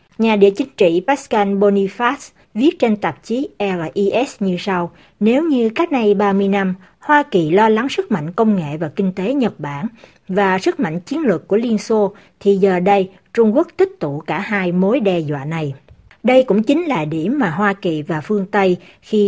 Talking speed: 200 wpm